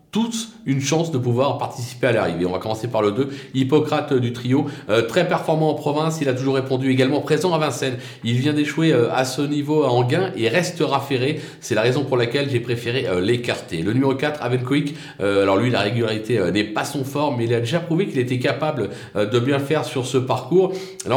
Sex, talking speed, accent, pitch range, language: male, 230 wpm, French, 125-155 Hz, French